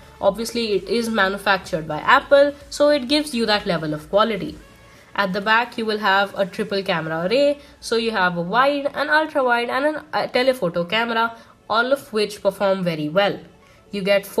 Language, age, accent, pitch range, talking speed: English, 20-39, Indian, 195-270 Hz, 180 wpm